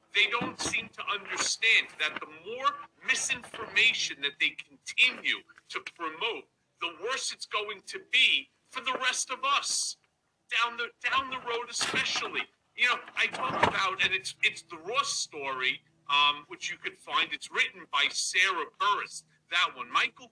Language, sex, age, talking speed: English, male, 50-69, 160 wpm